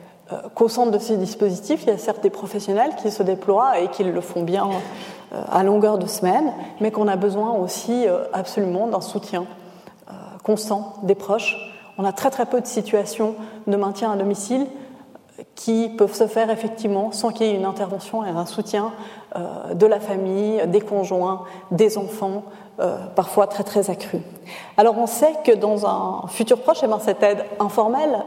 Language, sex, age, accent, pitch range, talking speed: French, female, 30-49, French, 190-220 Hz, 175 wpm